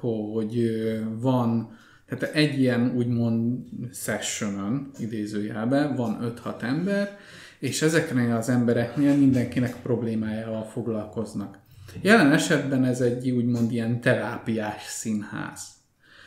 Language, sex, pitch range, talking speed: Hungarian, male, 115-135 Hz, 95 wpm